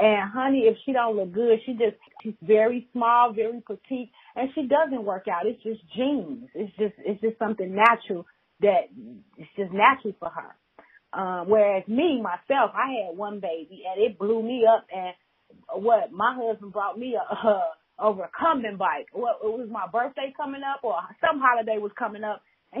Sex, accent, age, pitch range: female, American, 30-49, 205-260 Hz